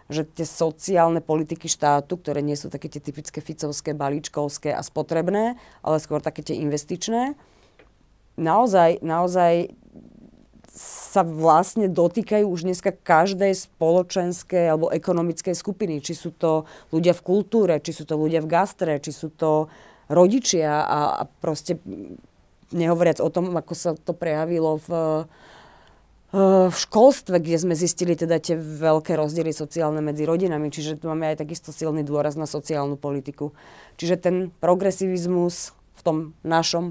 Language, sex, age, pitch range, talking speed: Slovak, female, 30-49, 155-180 Hz, 140 wpm